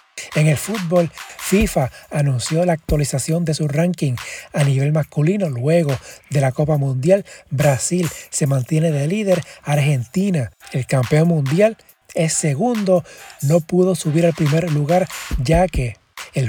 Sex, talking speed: male, 140 wpm